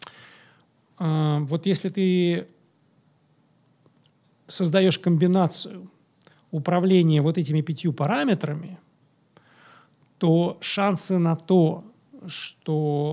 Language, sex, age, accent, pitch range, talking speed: Russian, male, 40-59, native, 145-180 Hz, 70 wpm